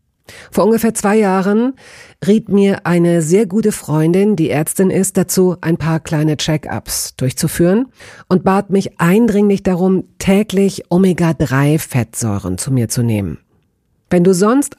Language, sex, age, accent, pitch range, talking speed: German, female, 50-69, German, 145-195 Hz, 135 wpm